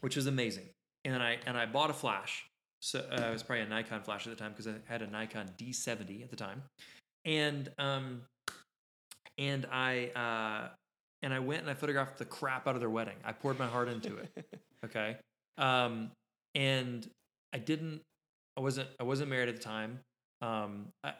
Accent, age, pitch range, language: American, 20-39, 110-145 Hz, English